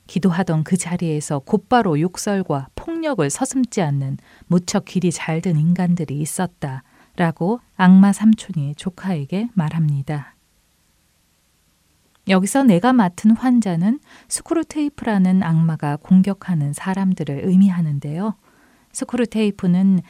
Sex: female